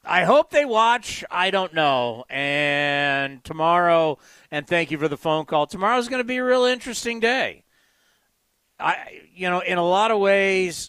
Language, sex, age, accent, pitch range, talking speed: English, male, 40-59, American, 160-220 Hz, 175 wpm